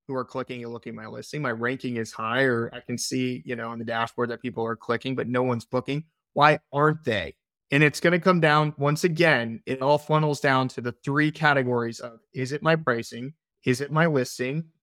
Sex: male